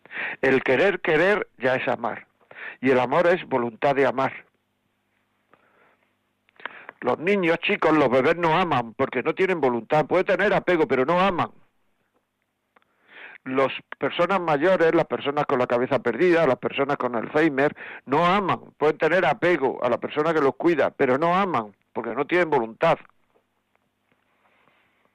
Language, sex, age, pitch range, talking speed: Spanish, male, 60-79, 120-160 Hz, 145 wpm